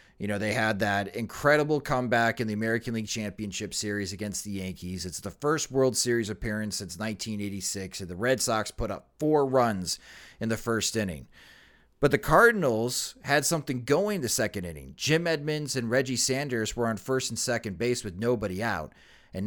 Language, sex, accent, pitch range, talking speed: English, male, American, 110-155 Hz, 185 wpm